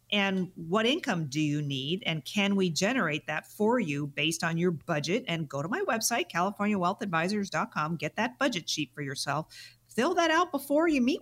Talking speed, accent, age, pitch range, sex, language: 185 wpm, American, 50-69, 160-215 Hz, female, English